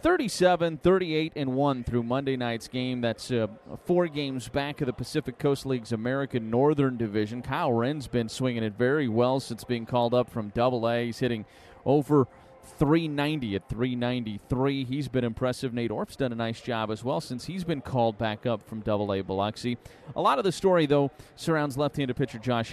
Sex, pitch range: male, 120-150 Hz